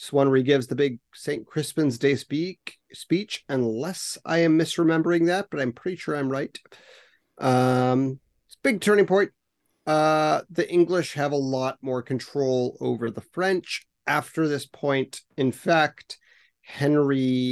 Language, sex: English, male